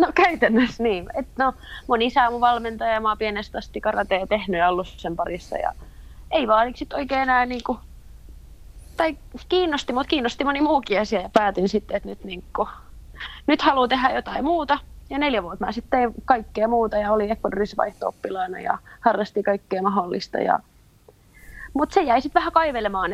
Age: 20-39